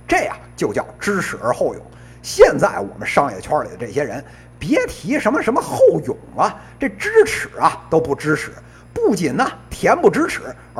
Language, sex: Chinese, male